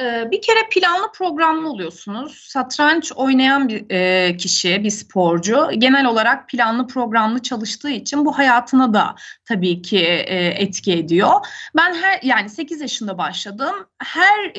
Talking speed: 130 wpm